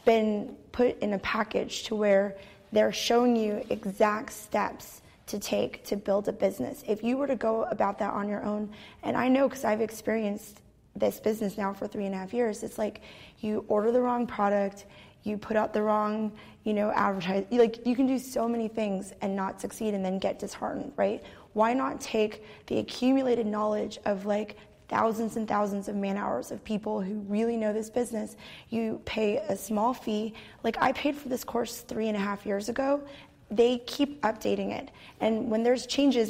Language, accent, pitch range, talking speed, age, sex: English, American, 210-240 Hz, 195 wpm, 20-39, female